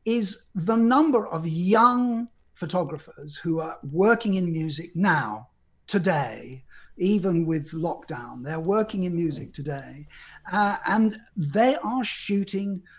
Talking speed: 120 wpm